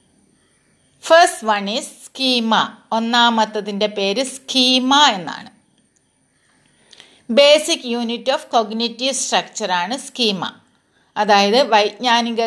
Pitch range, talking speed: 210-260 Hz, 75 wpm